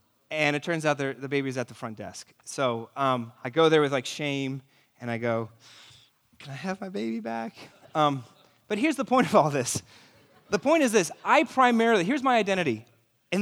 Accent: American